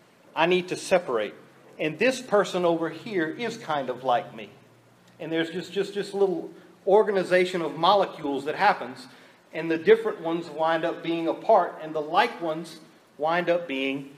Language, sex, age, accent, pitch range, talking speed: English, male, 40-59, American, 155-195 Hz, 170 wpm